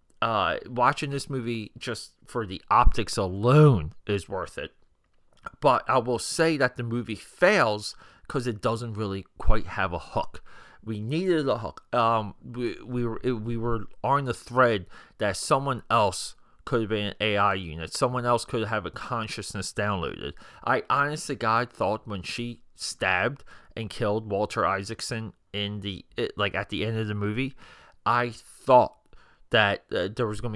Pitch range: 100-125 Hz